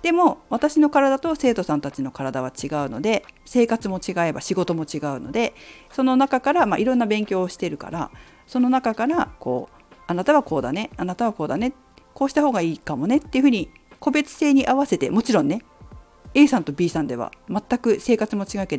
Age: 40-59